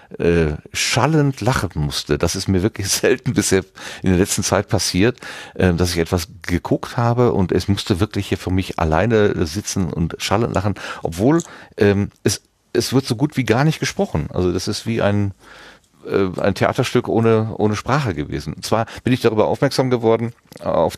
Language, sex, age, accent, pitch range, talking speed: German, male, 40-59, German, 85-110 Hz, 170 wpm